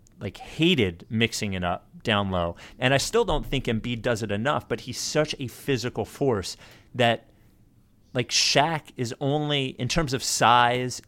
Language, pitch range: English, 100-120 Hz